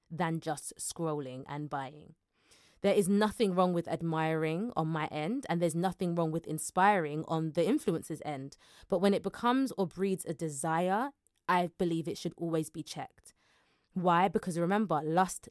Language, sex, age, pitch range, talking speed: English, female, 20-39, 155-190 Hz, 165 wpm